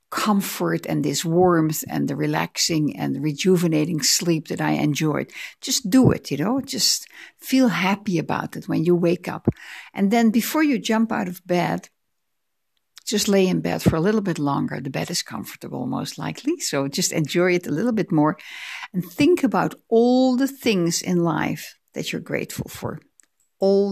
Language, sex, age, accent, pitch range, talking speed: English, female, 60-79, Dutch, 175-235 Hz, 180 wpm